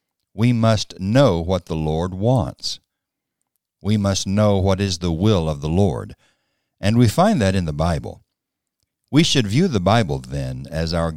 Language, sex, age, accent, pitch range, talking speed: English, male, 60-79, American, 80-105 Hz, 170 wpm